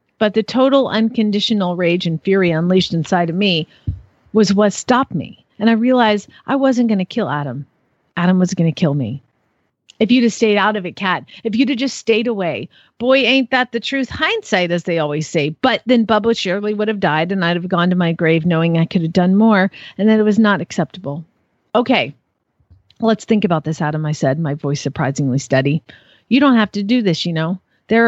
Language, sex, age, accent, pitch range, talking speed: English, female, 40-59, American, 165-220 Hz, 215 wpm